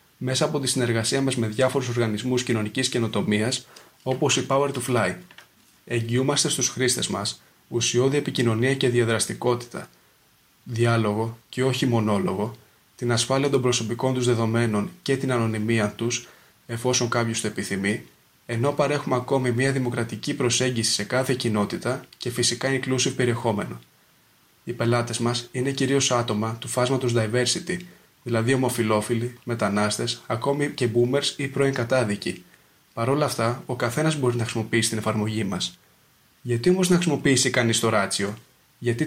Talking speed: 140 wpm